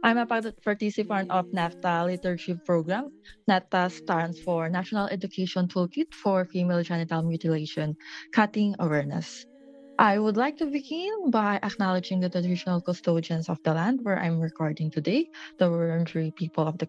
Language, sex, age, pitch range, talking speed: English, female, 20-39, 165-220 Hz, 145 wpm